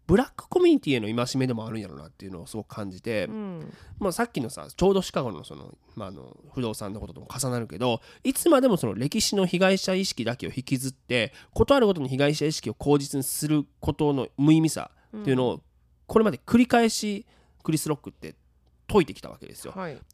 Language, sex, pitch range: Japanese, male, 120-195 Hz